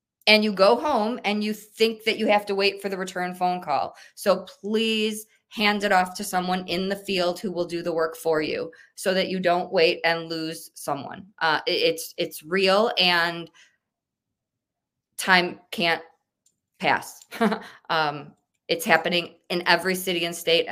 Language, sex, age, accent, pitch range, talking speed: English, female, 20-39, American, 165-200 Hz, 170 wpm